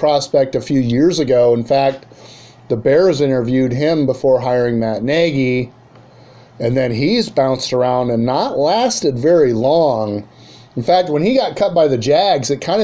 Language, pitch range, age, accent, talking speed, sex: English, 130-155 Hz, 30-49, American, 170 wpm, male